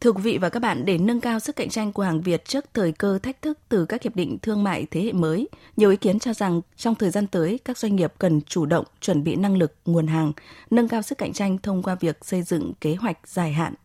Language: Vietnamese